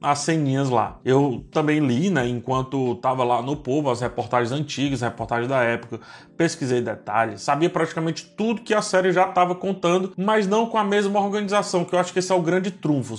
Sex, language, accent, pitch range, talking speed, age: male, Portuguese, Brazilian, 140-190 Hz, 205 wpm, 20-39